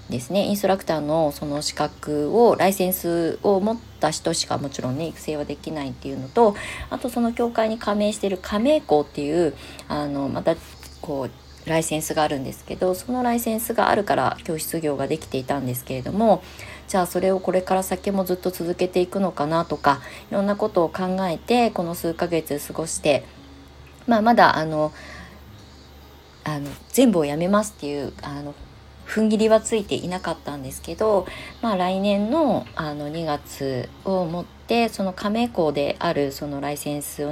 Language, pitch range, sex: Japanese, 145-200 Hz, female